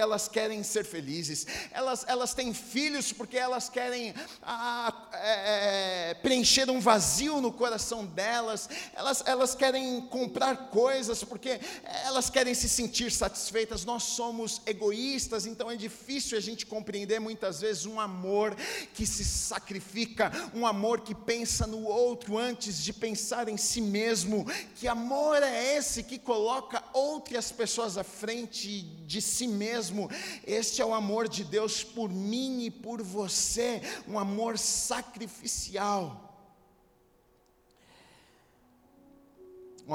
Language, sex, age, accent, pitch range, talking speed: Portuguese, male, 40-59, Brazilian, 195-240 Hz, 130 wpm